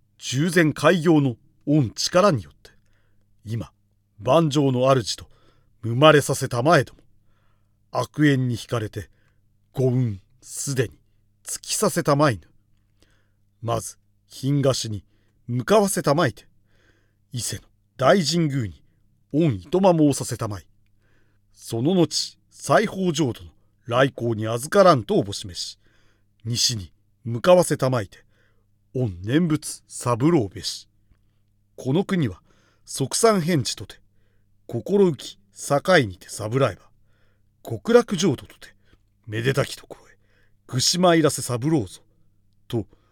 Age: 40-59